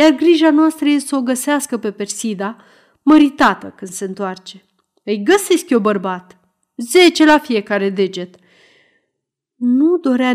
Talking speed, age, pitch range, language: 135 wpm, 30-49, 195-275 Hz, Romanian